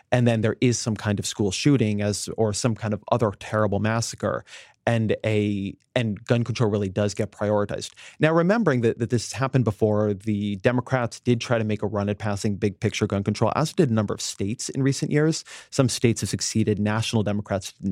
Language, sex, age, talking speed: English, male, 30-49, 215 wpm